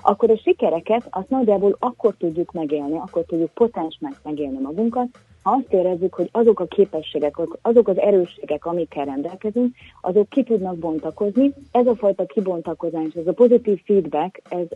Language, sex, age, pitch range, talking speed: Hungarian, female, 30-49, 155-205 Hz, 155 wpm